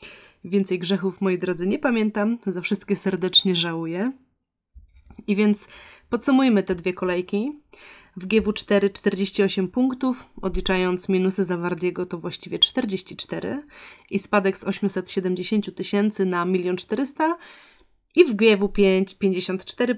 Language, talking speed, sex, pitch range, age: Polish, 115 wpm, female, 185-225 Hz, 30-49